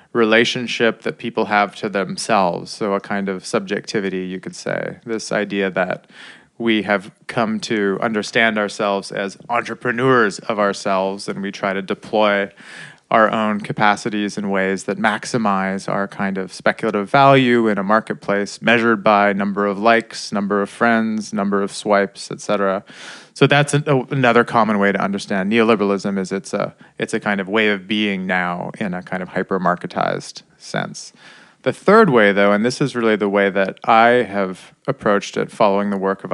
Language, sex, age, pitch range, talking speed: Finnish, male, 20-39, 100-120 Hz, 175 wpm